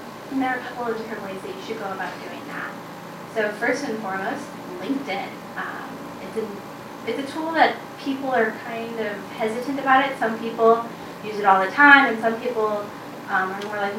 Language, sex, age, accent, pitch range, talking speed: English, female, 10-29, American, 205-245 Hz, 200 wpm